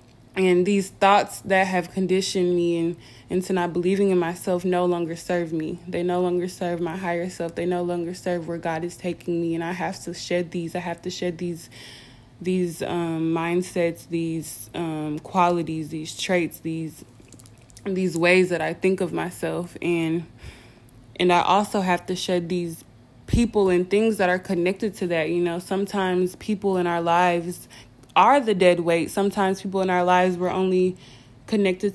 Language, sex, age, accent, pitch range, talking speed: English, female, 20-39, American, 165-185 Hz, 180 wpm